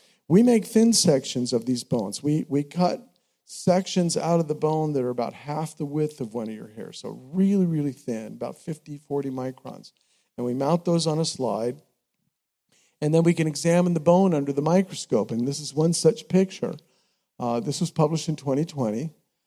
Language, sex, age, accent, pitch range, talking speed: English, male, 50-69, American, 135-175 Hz, 195 wpm